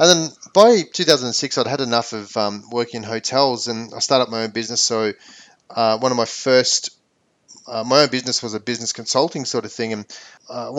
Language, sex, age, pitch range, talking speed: English, male, 30-49, 115-145 Hz, 205 wpm